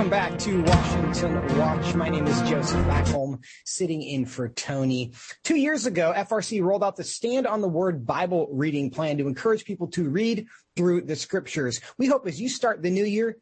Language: English